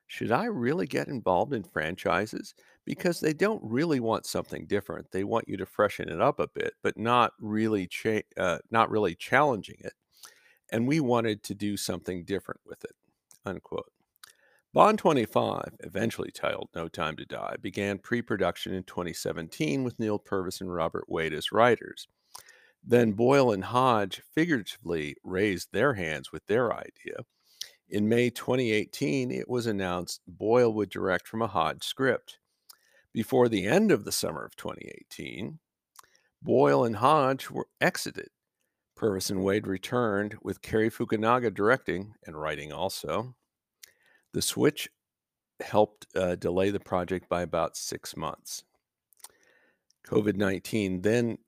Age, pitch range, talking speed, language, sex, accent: 50-69, 90-115 Hz, 145 wpm, English, male, American